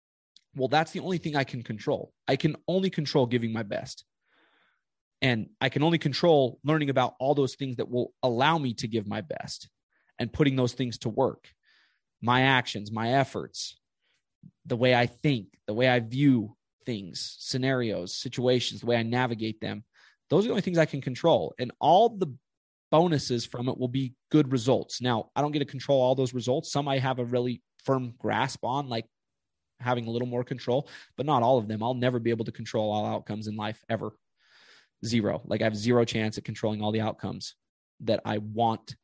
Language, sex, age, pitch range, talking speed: English, male, 30-49, 115-140 Hz, 200 wpm